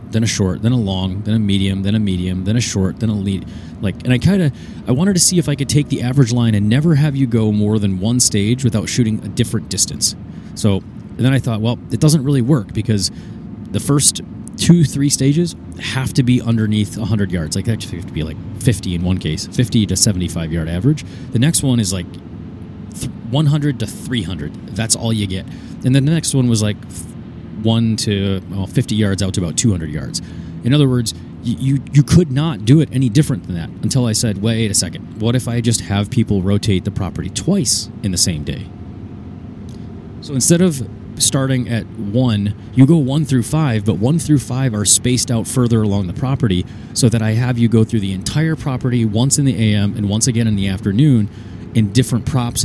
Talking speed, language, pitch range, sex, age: 220 wpm, English, 100-130 Hz, male, 30-49